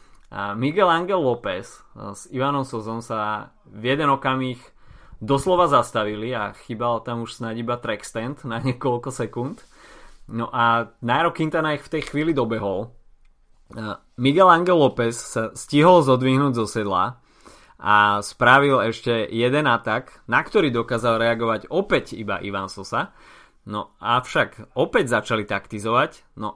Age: 20-39